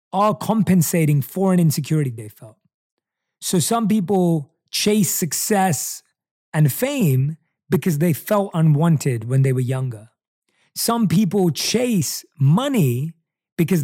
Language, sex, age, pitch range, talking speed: English, male, 30-49, 140-195 Hz, 115 wpm